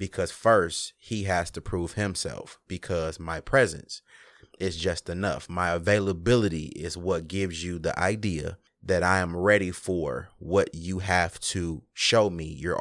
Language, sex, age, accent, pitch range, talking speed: English, male, 30-49, American, 85-100 Hz, 155 wpm